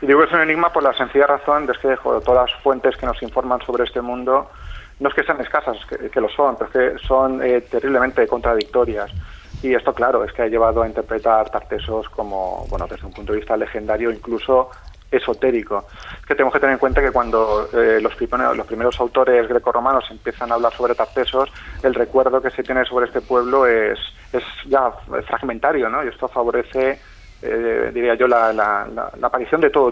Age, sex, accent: 30-49, male, Spanish